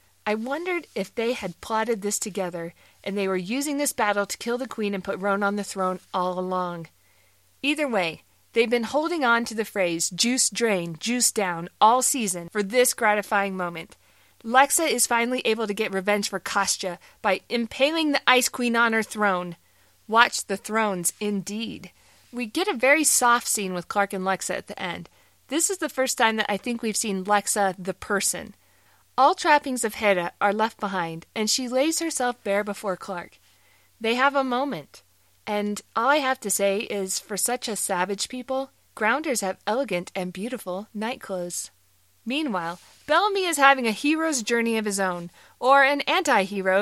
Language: English